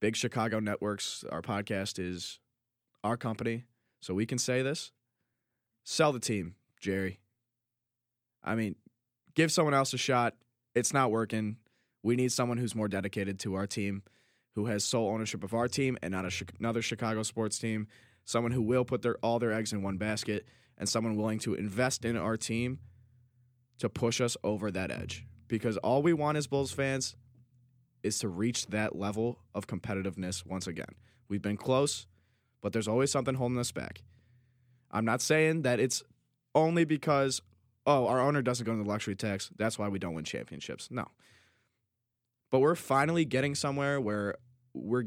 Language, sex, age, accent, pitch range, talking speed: English, male, 20-39, American, 105-125 Hz, 175 wpm